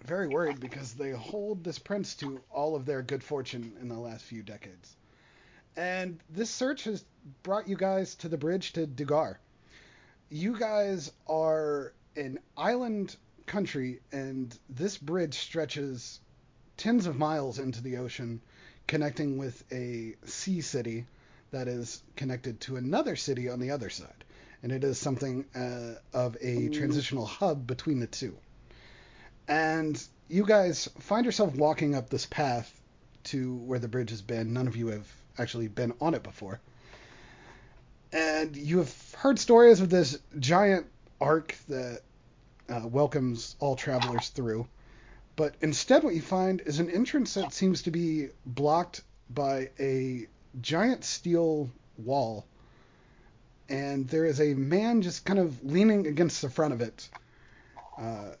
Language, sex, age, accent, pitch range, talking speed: English, male, 30-49, American, 120-160 Hz, 150 wpm